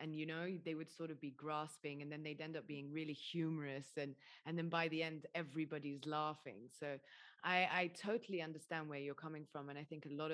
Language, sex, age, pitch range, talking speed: English, female, 20-39, 150-185 Hz, 225 wpm